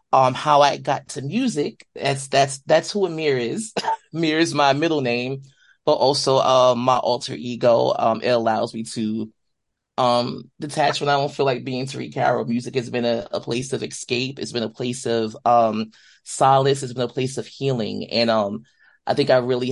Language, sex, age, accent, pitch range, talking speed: English, male, 30-49, American, 120-150 Hz, 200 wpm